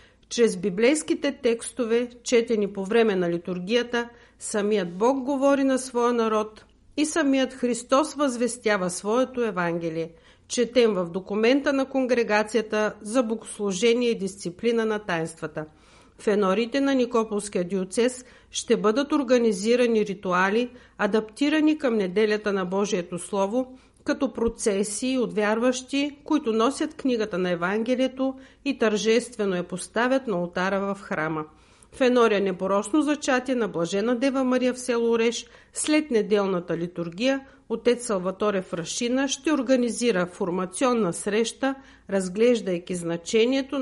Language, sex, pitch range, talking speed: Bulgarian, female, 195-255 Hz, 120 wpm